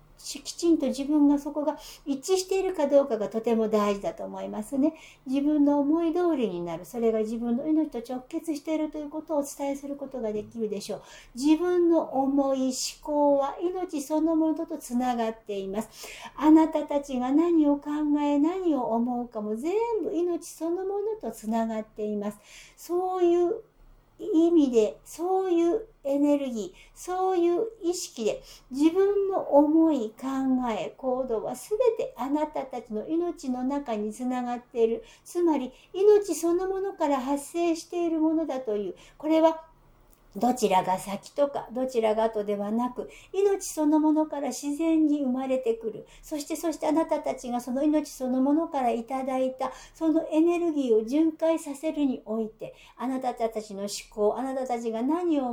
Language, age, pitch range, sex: Japanese, 60-79, 235-325 Hz, female